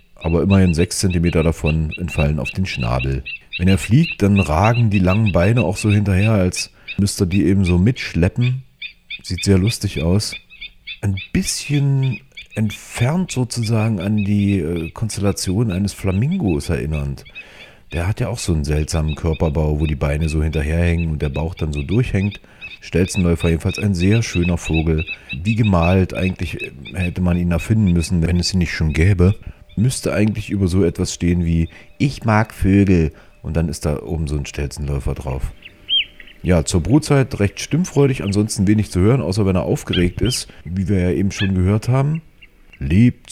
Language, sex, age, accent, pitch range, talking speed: German, male, 40-59, German, 80-105 Hz, 170 wpm